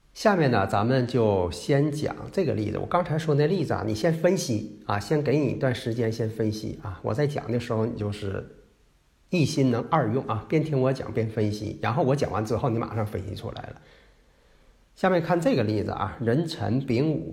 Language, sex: Chinese, male